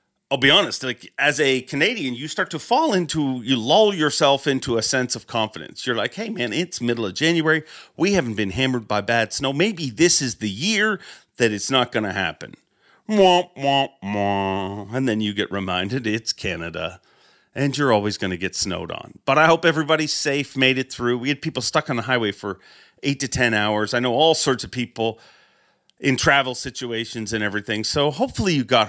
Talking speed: 200 wpm